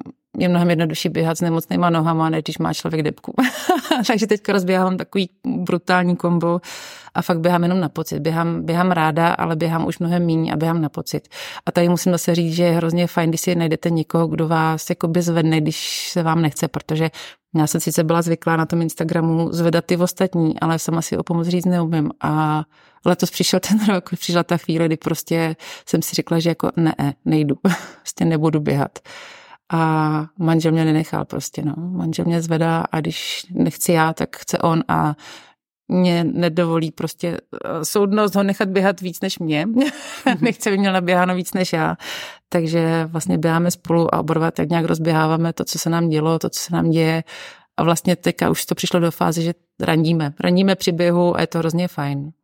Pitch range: 160-180 Hz